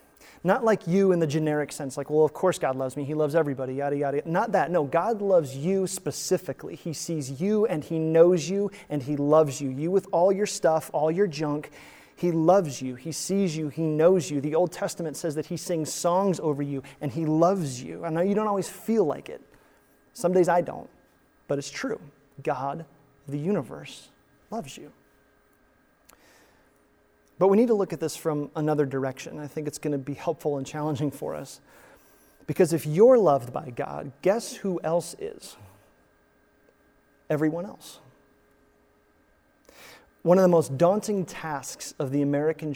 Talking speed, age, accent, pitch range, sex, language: 180 wpm, 30-49, American, 145-175 Hz, male, English